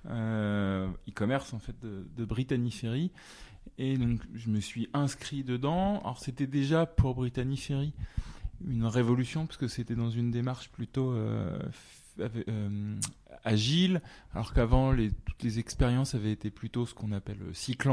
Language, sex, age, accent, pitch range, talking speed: French, male, 20-39, French, 110-130 Hz, 155 wpm